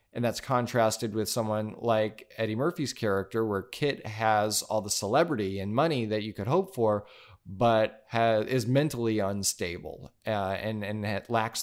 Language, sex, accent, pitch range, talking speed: English, male, American, 105-120 Hz, 165 wpm